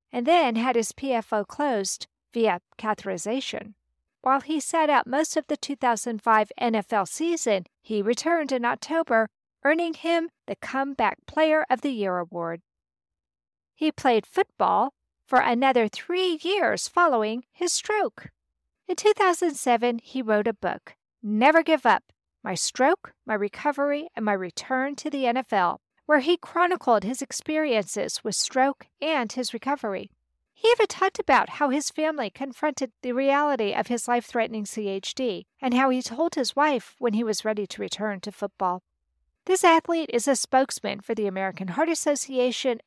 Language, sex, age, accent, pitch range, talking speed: English, female, 50-69, American, 215-300 Hz, 150 wpm